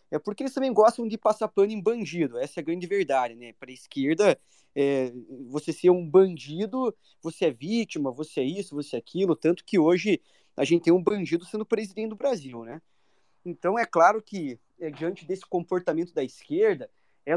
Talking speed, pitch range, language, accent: 190 wpm, 145-195 Hz, Portuguese, Brazilian